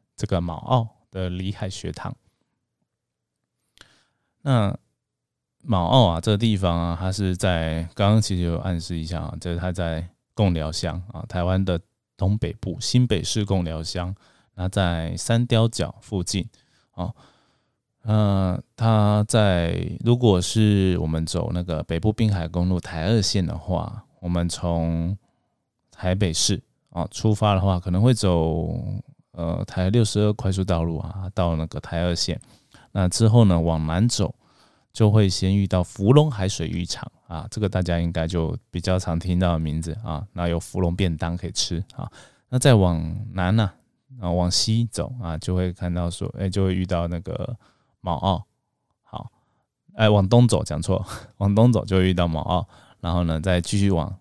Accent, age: native, 20-39